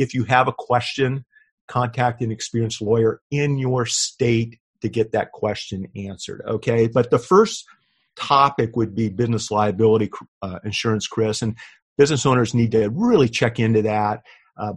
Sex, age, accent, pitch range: male, 50-69, American, 110-125 Hz